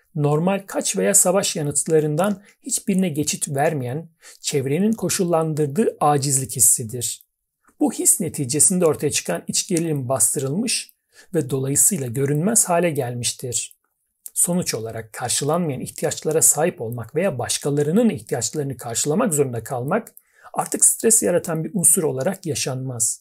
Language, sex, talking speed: Turkish, male, 115 wpm